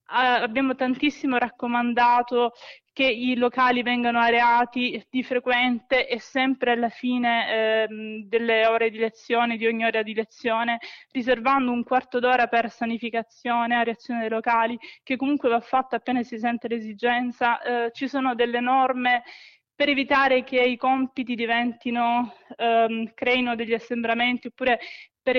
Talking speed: 140 wpm